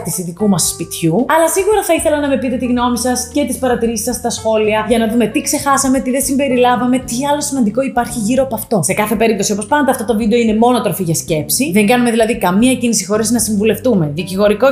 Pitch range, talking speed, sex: 205-280 Hz, 230 wpm, female